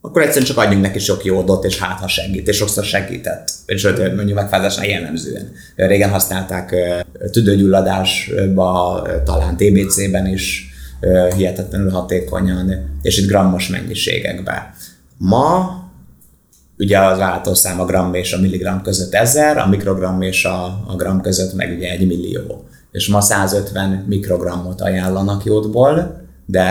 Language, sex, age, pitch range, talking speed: Hungarian, male, 30-49, 90-100 Hz, 130 wpm